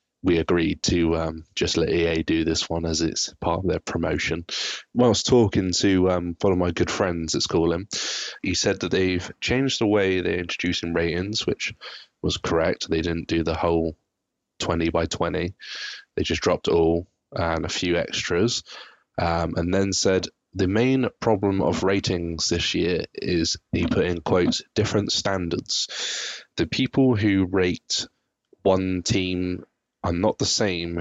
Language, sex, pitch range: English, male, 85-95 Hz